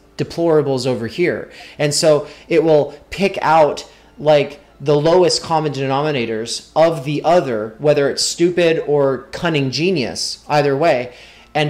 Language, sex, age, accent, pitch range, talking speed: English, male, 30-49, American, 135-160 Hz, 135 wpm